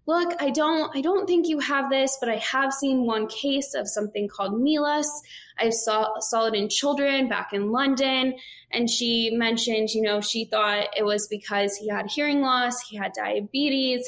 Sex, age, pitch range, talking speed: female, 10-29, 210-255 Hz, 190 wpm